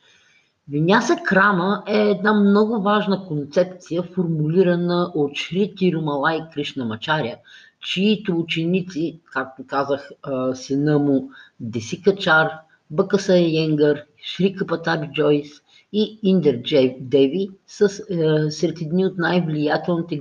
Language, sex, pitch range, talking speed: Bulgarian, female, 150-200 Hz, 105 wpm